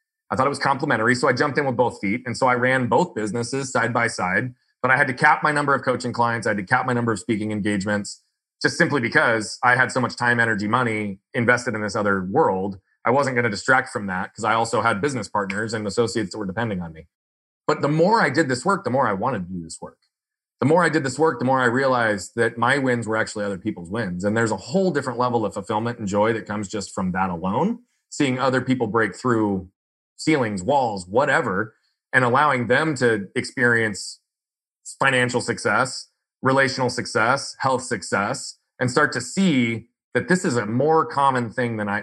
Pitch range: 105-130 Hz